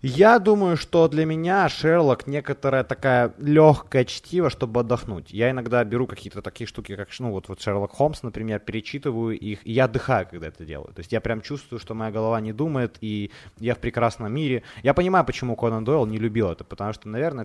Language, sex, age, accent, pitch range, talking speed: Ukrainian, male, 20-39, native, 100-130 Hz, 205 wpm